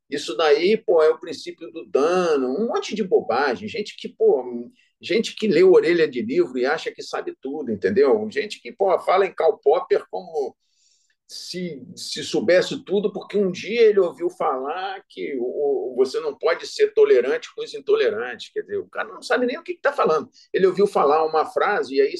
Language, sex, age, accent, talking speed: Portuguese, male, 50-69, Brazilian, 195 wpm